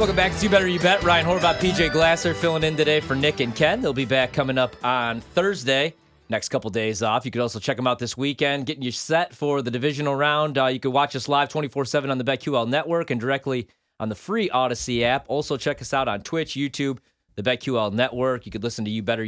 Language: English